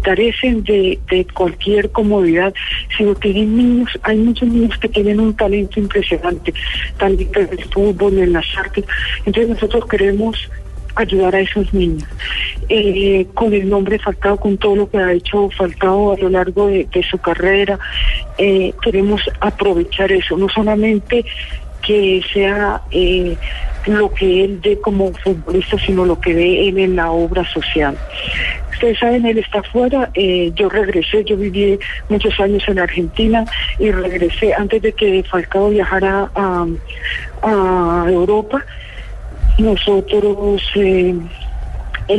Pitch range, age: 185-210 Hz, 40-59